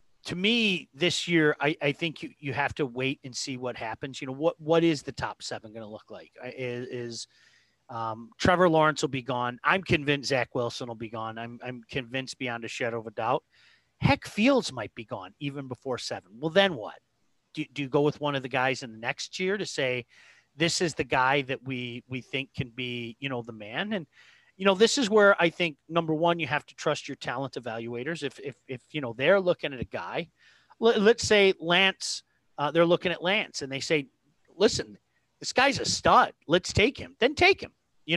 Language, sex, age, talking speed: English, male, 30-49, 225 wpm